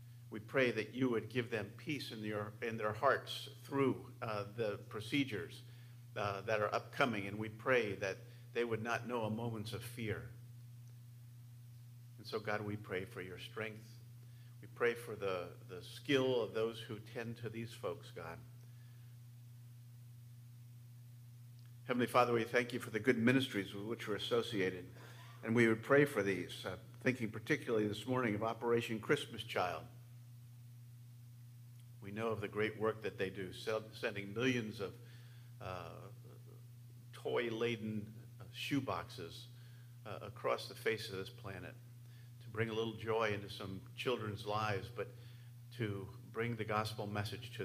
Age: 70-89